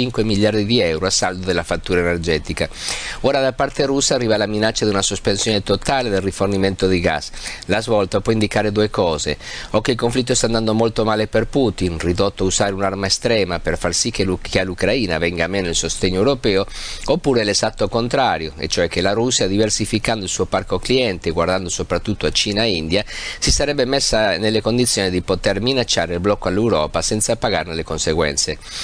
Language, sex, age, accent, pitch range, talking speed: Italian, male, 50-69, native, 95-115 Hz, 190 wpm